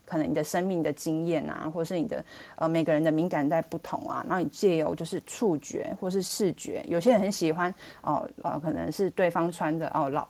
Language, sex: Chinese, female